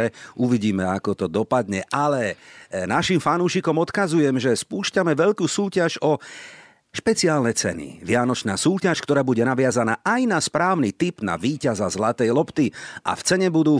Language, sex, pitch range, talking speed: Slovak, male, 115-160 Hz, 140 wpm